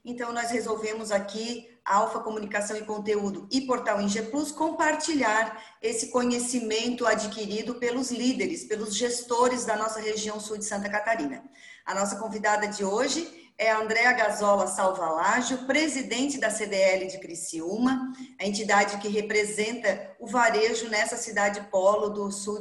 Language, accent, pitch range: Portuguese, Brazilian, 210-250 Hz